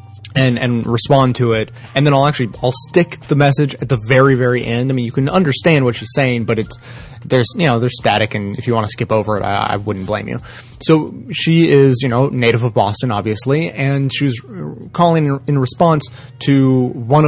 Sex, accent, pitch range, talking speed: male, American, 115-140 Hz, 215 wpm